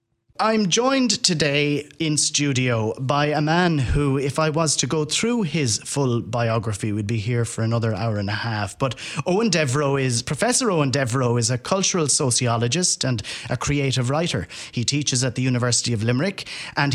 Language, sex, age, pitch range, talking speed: English, male, 30-49, 120-150 Hz, 175 wpm